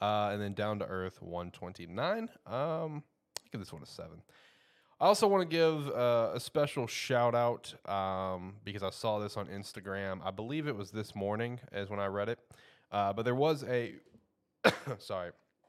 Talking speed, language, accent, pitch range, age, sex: 180 wpm, English, American, 95-120 Hz, 20-39, male